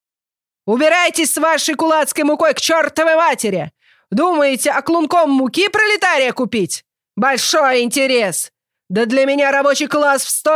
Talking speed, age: 130 wpm, 30-49